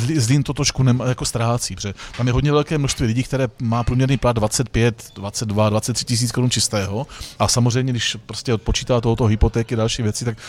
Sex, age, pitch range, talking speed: male, 30-49, 115-135 Hz, 185 wpm